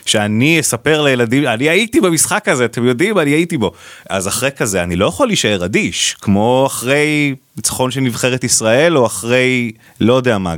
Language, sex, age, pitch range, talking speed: Hebrew, male, 30-49, 95-120 Hz, 175 wpm